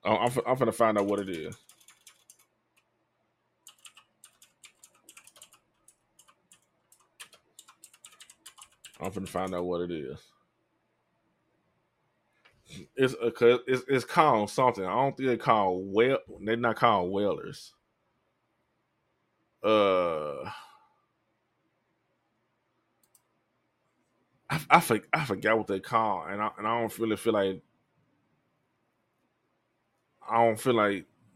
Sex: male